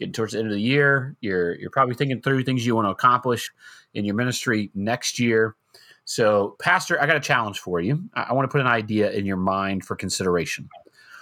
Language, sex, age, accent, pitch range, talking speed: English, male, 30-49, American, 115-150 Hz, 220 wpm